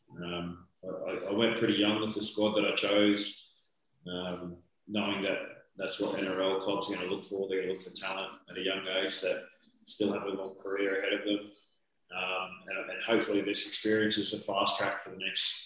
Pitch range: 95-110 Hz